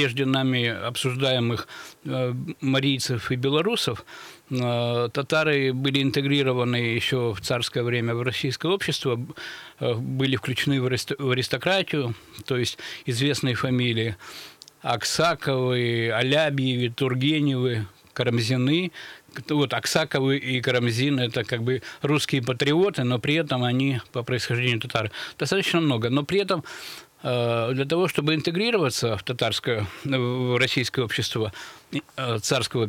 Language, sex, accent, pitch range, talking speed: Russian, male, native, 120-145 Hz, 110 wpm